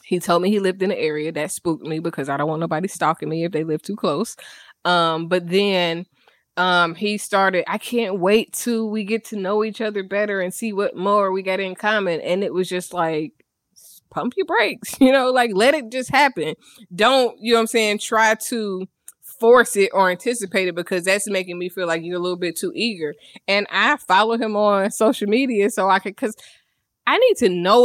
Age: 20-39